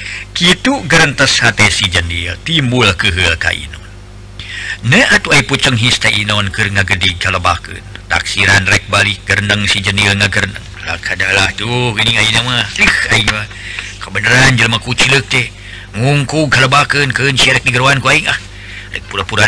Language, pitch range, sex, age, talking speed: Indonesian, 100-135 Hz, male, 50-69, 155 wpm